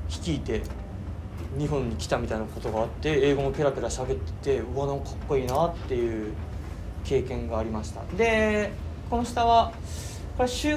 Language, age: Japanese, 20-39